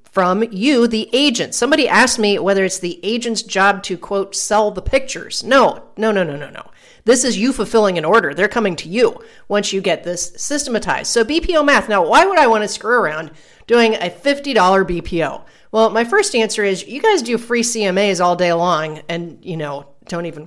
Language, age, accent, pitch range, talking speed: English, 40-59, American, 180-240 Hz, 205 wpm